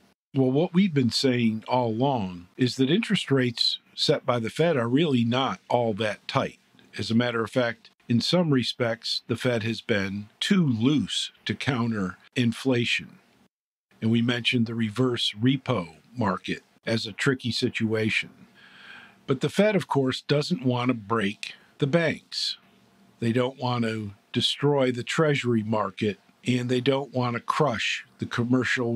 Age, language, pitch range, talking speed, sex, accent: 50-69, English, 115-140 Hz, 160 wpm, male, American